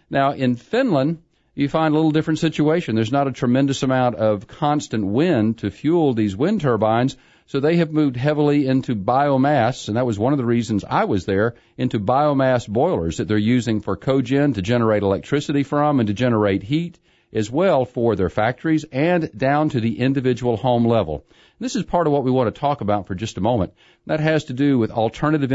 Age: 40-59